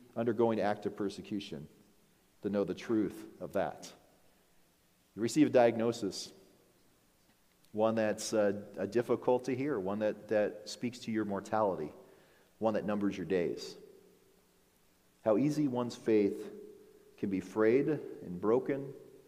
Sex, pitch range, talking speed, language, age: male, 105-145 Hz, 130 wpm, English, 40-59